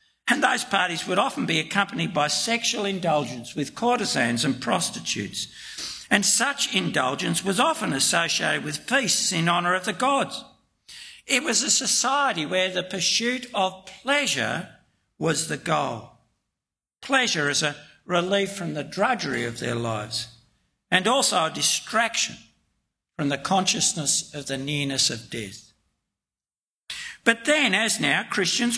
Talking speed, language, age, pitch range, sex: 140 wpm, English, 60-79, 145-210 Hz, male